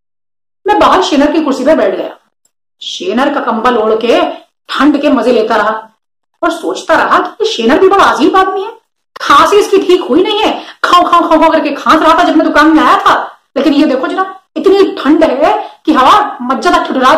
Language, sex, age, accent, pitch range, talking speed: Hindi, female, 30-49, native, 255-340 Hz, 135 wpm